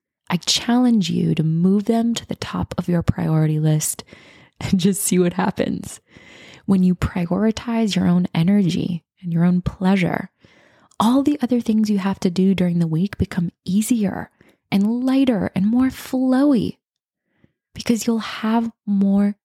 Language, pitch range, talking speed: English, 175-220 Hz, 155 wpm